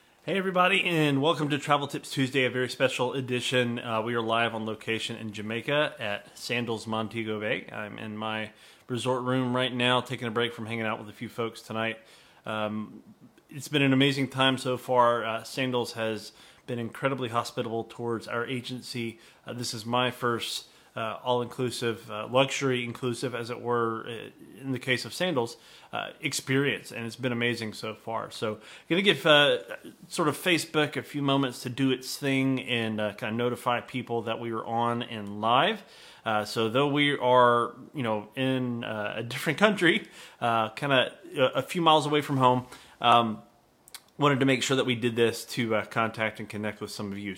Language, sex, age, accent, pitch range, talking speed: English, male, 30-49, American, 110-130 Hz, 190 wpm